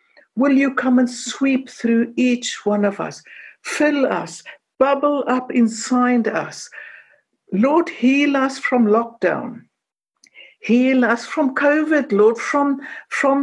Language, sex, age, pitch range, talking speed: English, female, 60-79, 215-275 Hz, 125 wpm